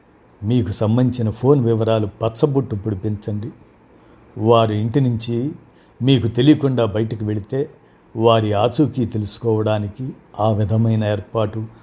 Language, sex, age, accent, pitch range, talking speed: Telugu, male, 50-69, native, 110-125 Hz, 95 wpm